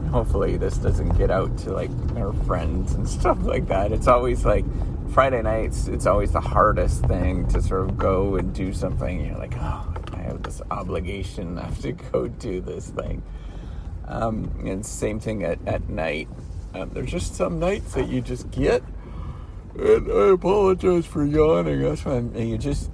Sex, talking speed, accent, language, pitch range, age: male, 185 wpm, American, English, 85-115 Hz, 40-59